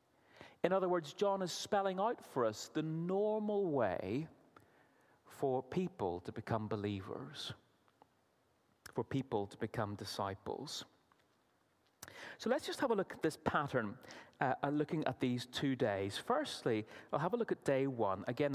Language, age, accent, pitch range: English, 30-49, British, 120-180 Hz